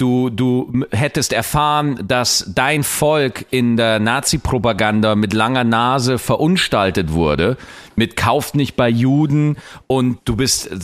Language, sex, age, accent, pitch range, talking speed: German, male, 40-59, German, 115-155 Hz, 125 wpm